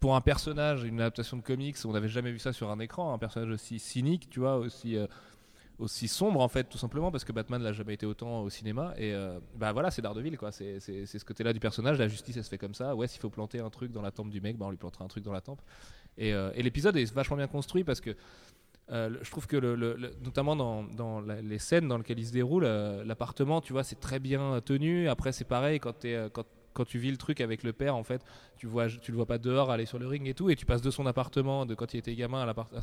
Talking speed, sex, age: 290 wpm, male, 20-39